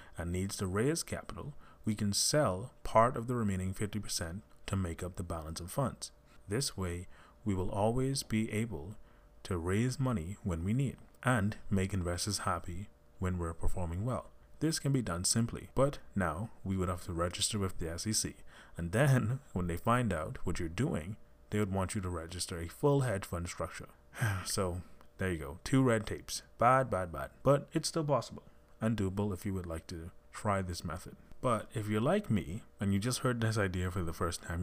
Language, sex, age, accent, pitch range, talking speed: English, male, 30-49, American, 90-120 Hz, 200 wpm